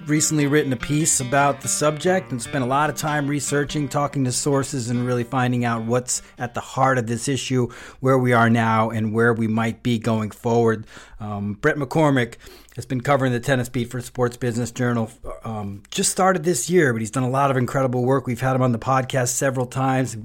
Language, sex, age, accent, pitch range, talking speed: English, male, 30-49, American, 115-130 Hz, 215 wpm